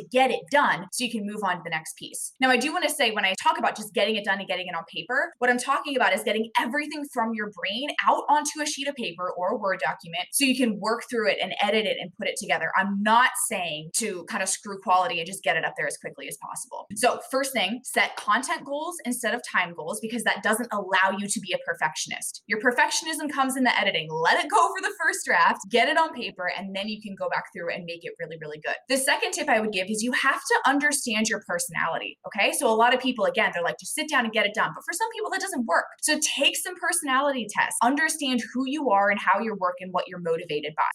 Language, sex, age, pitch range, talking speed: English, female, 20-39, 195-280 Hz, 270 wpm